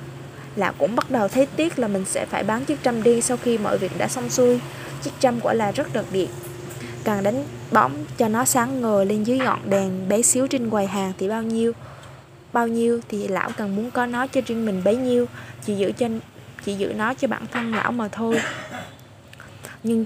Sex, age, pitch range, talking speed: female, 20-39, 205-250 Hz, 220 wpm